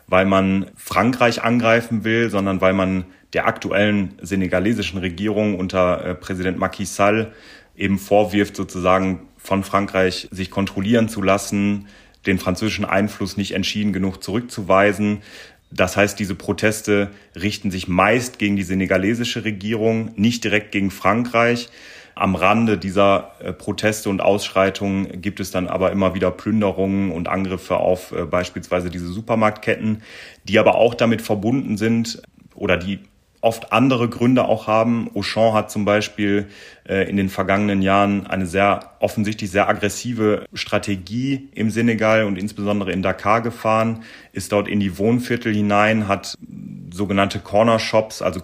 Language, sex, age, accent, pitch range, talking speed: German, male, 30-49, German, 95-110 Hz, 135 wpm